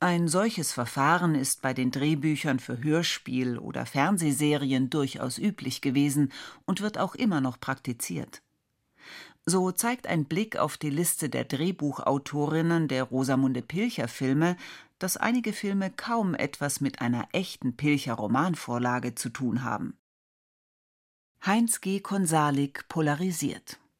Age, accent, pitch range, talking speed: 40-59, German, 135-185 Hz, 120 wpm